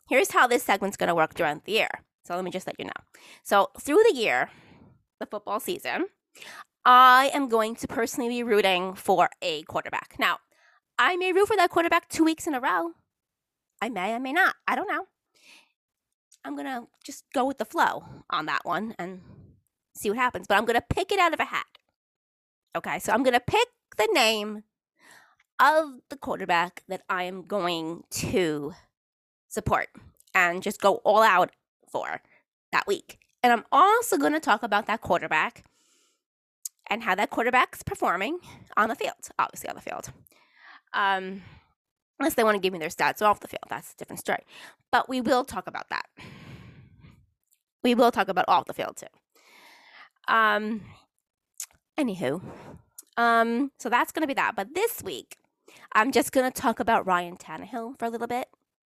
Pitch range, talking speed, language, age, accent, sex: 205-315 Hz, 180 wpm, English, 20-39, American, female